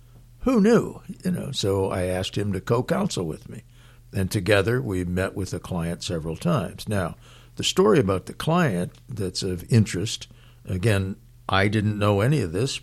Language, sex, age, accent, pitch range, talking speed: English, male, 60-79, American, 90-120 Hz, 175 wpm